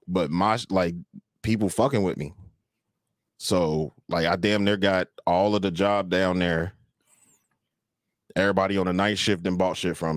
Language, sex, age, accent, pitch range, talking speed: English, male, 30-49, American, 85-105 Hz, 165 wpm